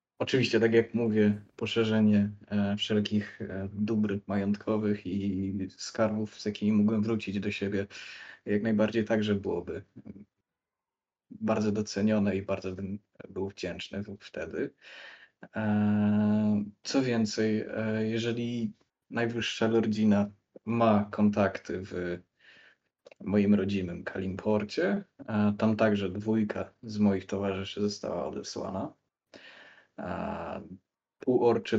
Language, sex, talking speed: Polish, male, 95 wpm